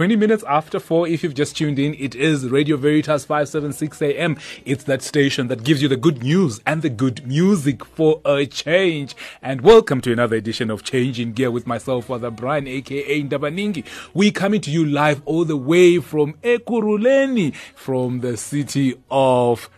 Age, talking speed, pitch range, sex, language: 30-49, 180 wpm, 125-155 Hz, male, English